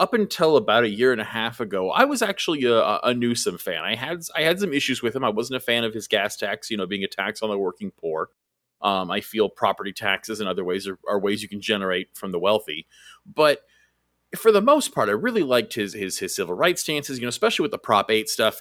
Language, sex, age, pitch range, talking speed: English, male, 30-49, 110-175 Hz, 260 wpm